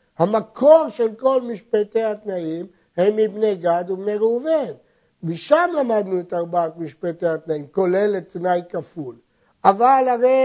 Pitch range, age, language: 165-225 Hz, 60-79, Hebrew